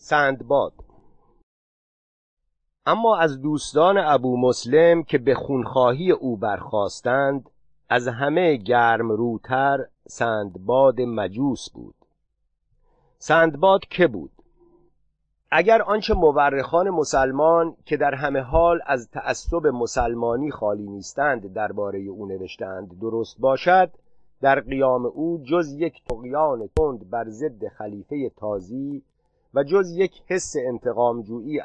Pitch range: 115-155 Hz